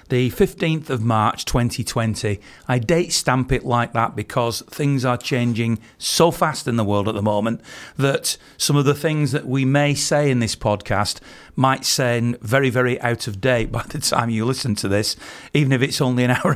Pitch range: 110-130 Hz